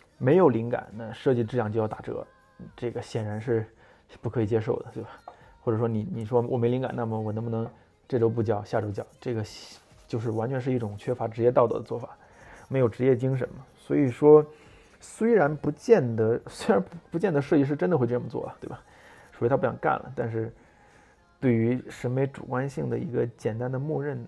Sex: male